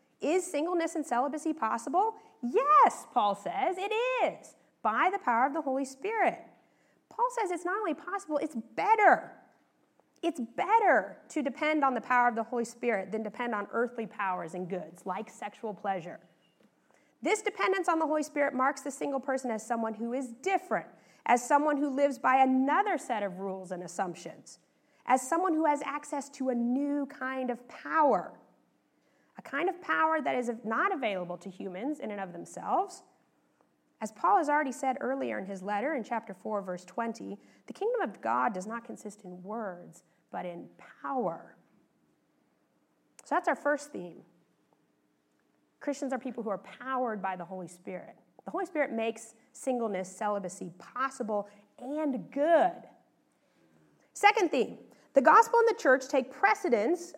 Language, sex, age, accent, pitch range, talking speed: English, female, 30-49, American, 220-320 Hz, 165 wpm